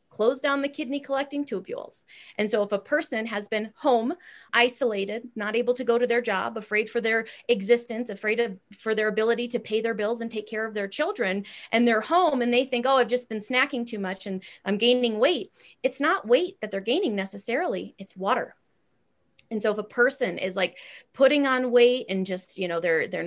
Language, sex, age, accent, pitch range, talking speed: English, female, 30-49, American, 205-255 Hz, 215 wpm